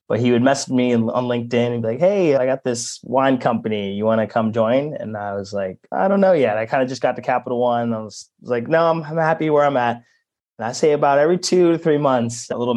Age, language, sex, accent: 20-39, English, male, American